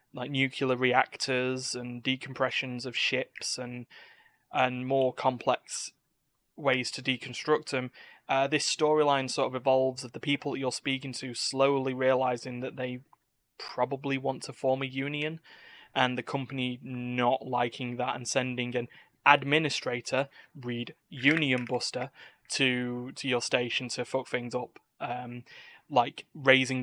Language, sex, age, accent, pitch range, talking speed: English, male, 20-39, British, 125-140 Hz, 135 wpm